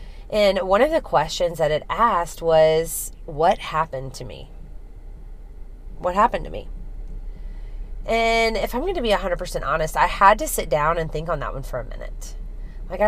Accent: American